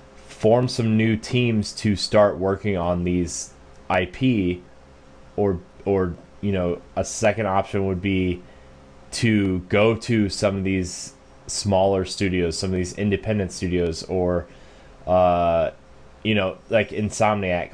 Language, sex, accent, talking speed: English, male, American, 130 wpm